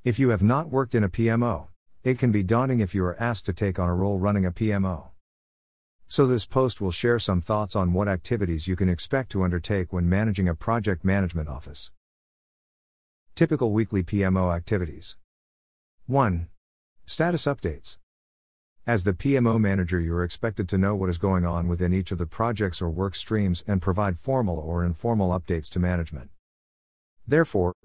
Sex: male